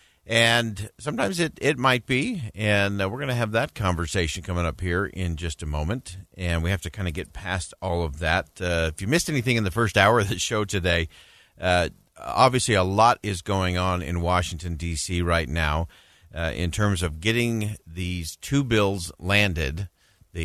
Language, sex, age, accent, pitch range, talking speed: English, male, 50-69, American, 90-115 Hz, 195 wpm